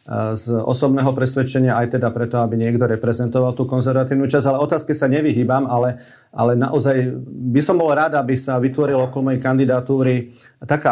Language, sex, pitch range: Slovak, male, 120-135 Hz